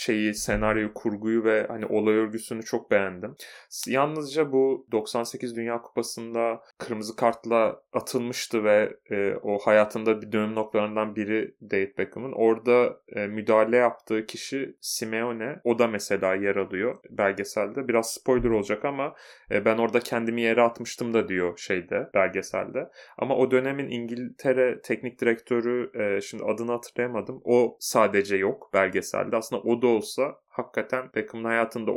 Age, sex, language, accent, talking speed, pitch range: 30-49, male, Turkish, native, 140 wpm, 110-120 Hz